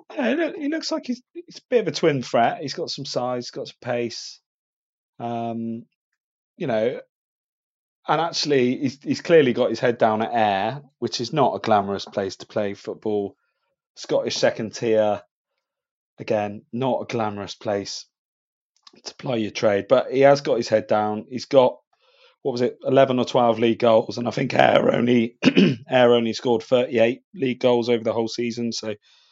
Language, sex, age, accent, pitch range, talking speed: English, male, 30-49, British, 115-160 Hz, 180 wpm